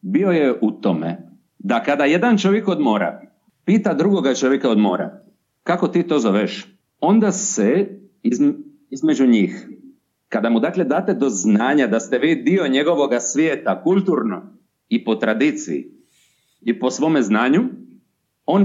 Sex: male